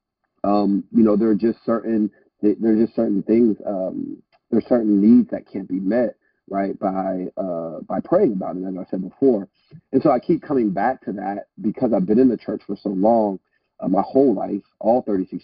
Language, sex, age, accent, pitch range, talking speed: English, male, 30-49, American, 100-110 Hz, 215 wpm